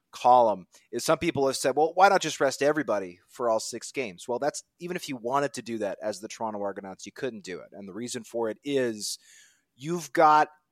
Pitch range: 120-150 Hz